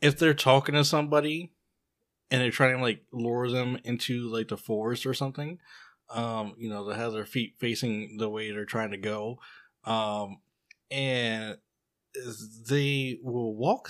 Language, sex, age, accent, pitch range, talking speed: English, male, 20-39, American, 110-140 Hz, 160 wpm